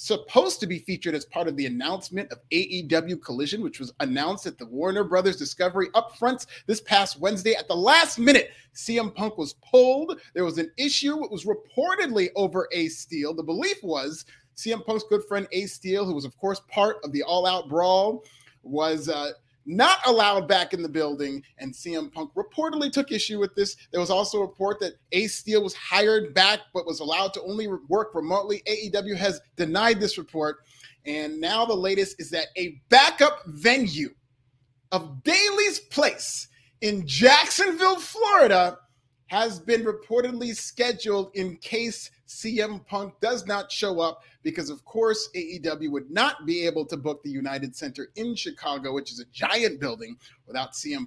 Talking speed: 175 wpm